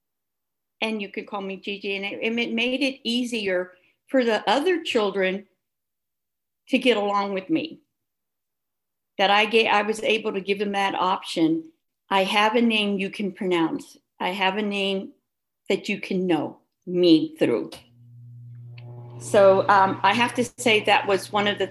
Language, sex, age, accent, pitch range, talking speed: English, female, 50-69, American, 190-230 Hz, 165 wpm